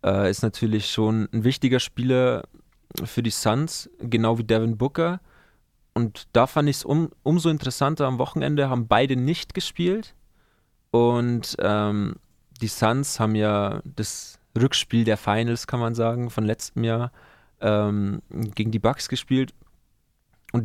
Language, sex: German, male